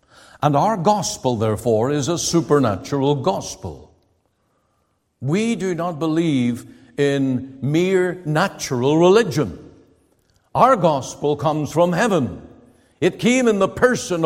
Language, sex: English, male